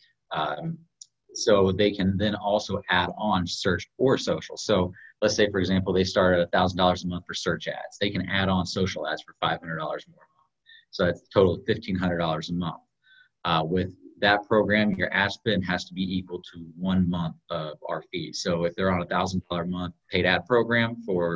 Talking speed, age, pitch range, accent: 220 wpm, 30-49, 90-105 Hz, American